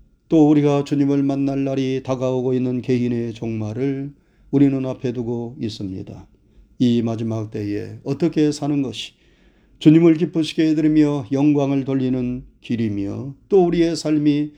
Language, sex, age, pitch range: Korean, male, 40-59, 120-150 Hz